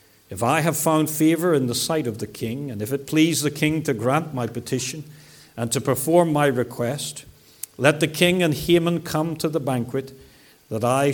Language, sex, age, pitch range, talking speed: English, male, 60-79, 120-150 Hz, 200 wpm